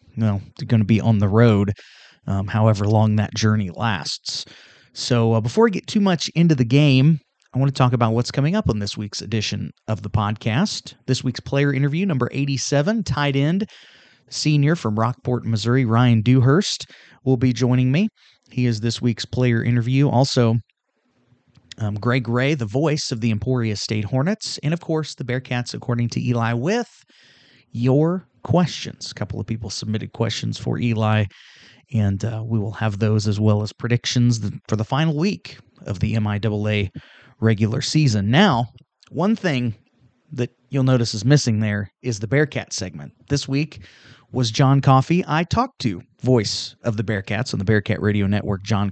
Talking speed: 175 wpm